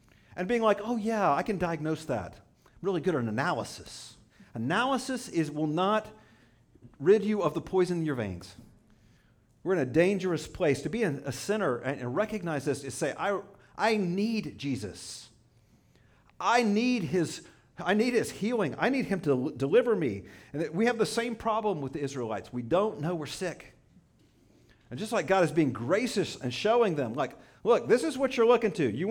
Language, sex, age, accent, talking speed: English, male, 50-69, American, 185 wpm